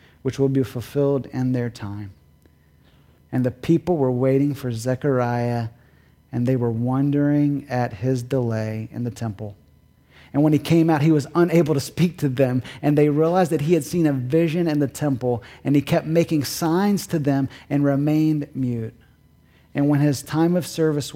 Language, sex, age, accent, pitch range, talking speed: English, male, 30-49, American, 125-160 Hz, 180 wpm